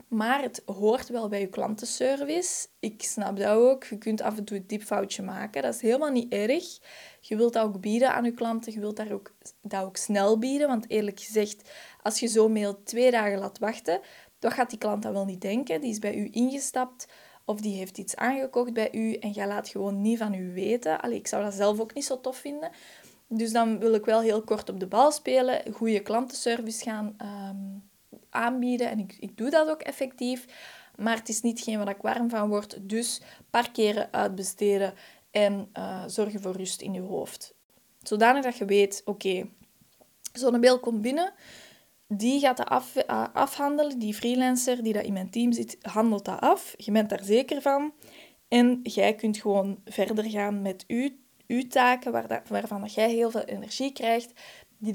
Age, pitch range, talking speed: 20-39, 205-250 Hz, 200 wpm